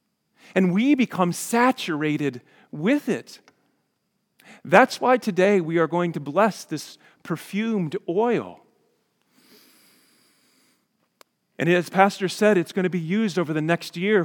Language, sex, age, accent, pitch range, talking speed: English, male, 40-59, American, 160-205 Hz, 125 wpm